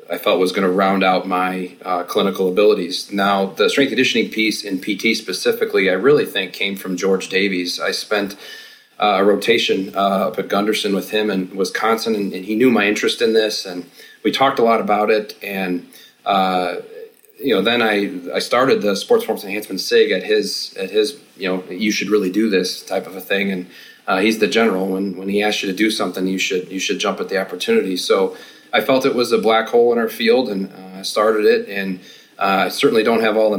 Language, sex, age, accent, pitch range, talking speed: English, male, 30-49, American, 95-110 Hz, 225 wpm